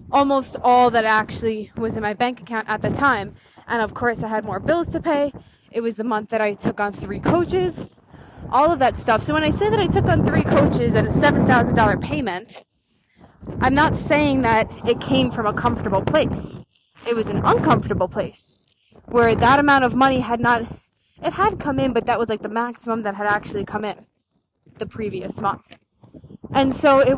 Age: 20-39